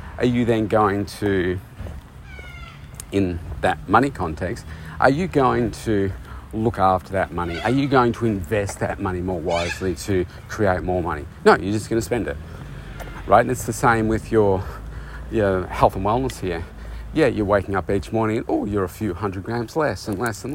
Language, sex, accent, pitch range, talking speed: English, male, Australian, 90-120 Hz, 195 wpm